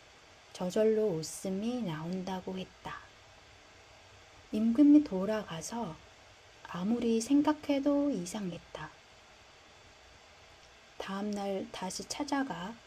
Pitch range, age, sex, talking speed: 180-250 Hz, 30-49, female, 60 wpm